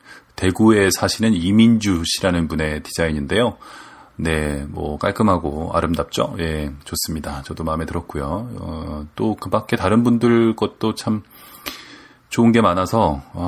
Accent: Korean